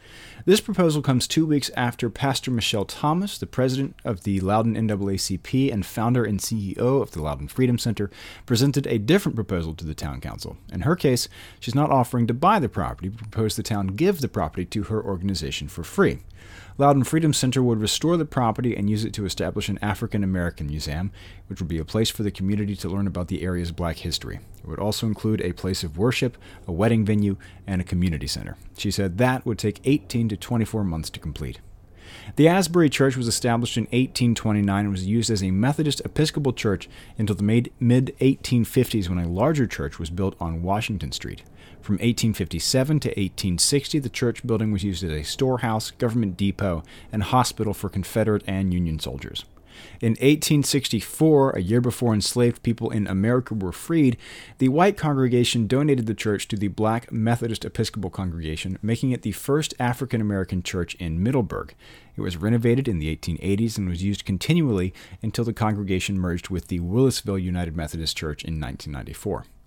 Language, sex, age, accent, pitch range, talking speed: English, male, 30-49, American, 95-120 Hz, 180 wpm